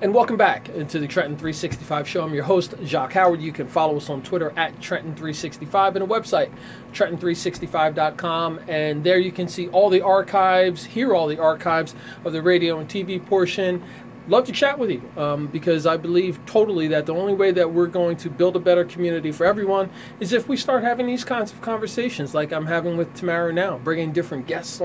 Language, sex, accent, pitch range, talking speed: English, male, American, 155-190 Hz, 205 wpm